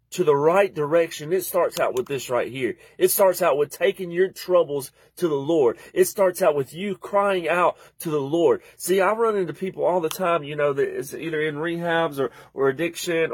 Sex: male